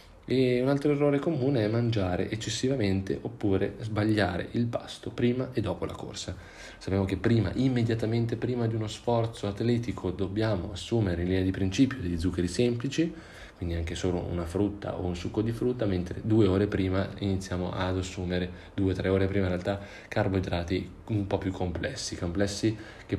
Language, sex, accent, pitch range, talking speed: Italian, male, native, 90-110 Hz, 170 wpm